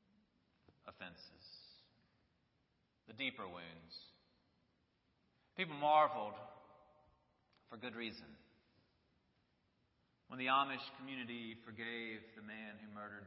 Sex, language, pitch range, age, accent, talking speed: male, English, 115-165 Hz, 40-59, American, 80 wpm